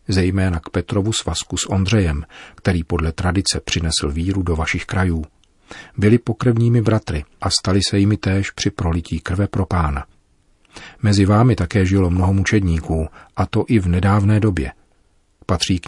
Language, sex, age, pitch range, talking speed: Czech, male, 40-59, 85-100 Hz, 155 wpm